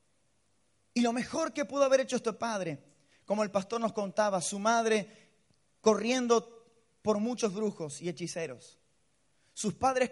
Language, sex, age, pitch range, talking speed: Spanish, male, 30-49, 195-235 Hz, 140 wpm